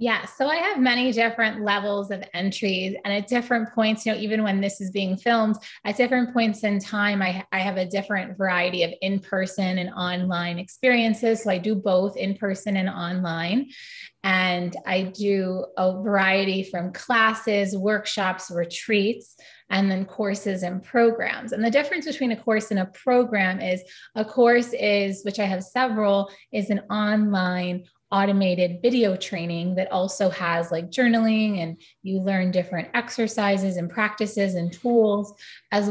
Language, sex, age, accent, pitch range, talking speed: English, female, 20-39, American, 185-215 Hz, 160 wpm